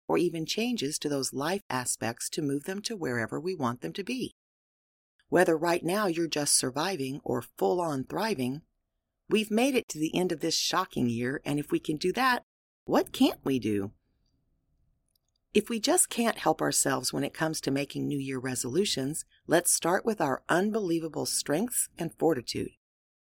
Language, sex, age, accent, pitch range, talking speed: English, female, 40-59, American, 130-205 Hz, 175 wpm